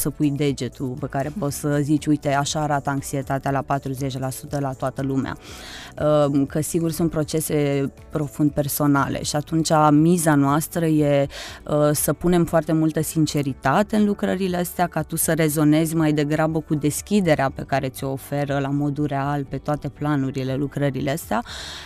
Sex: female